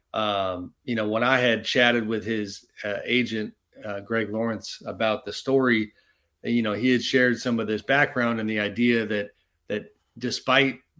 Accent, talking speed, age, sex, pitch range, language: American, 175 wpm, 40-59, male, 110-125 Hz, English